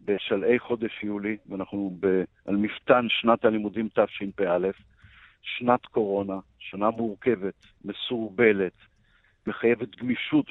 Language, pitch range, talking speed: Hebrew, 105-140 Hz, 95 wpm